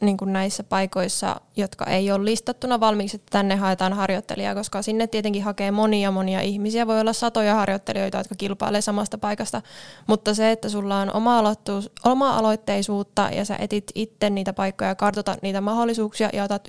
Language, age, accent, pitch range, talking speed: Finnish, 20-39, native, 195-215 Hz, 160 wpm